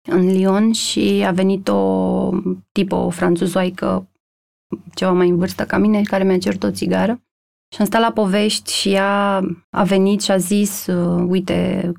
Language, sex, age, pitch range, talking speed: Romanian, female, 30-49, 180-210 Hz, 160 wpm